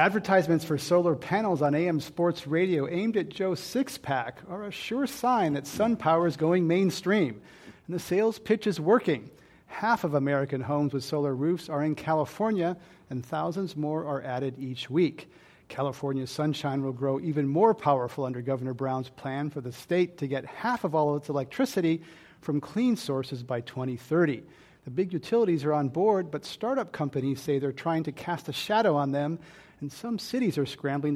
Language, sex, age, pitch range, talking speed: English, male, 40-59, 140-180 Hz, 185 wpm